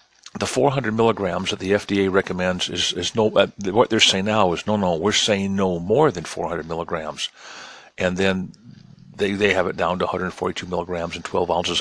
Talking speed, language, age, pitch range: 195 wpm, English, 50-69, 90-110 Hz